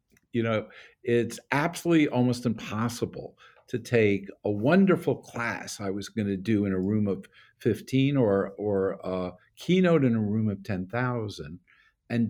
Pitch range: 100-140 Hz